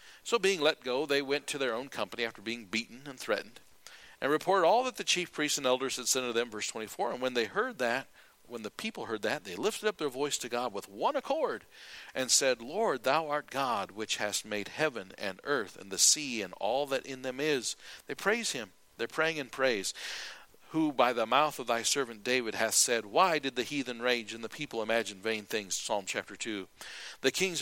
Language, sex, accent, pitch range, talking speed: English, male, American, 110-150 Hz, 225 wpm